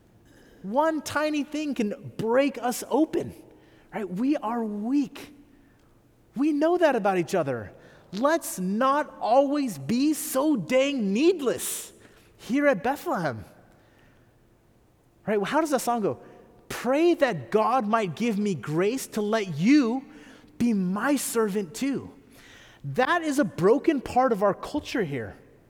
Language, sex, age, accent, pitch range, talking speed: English, male, 30-49, American, 170-260 Hz, 135 wpm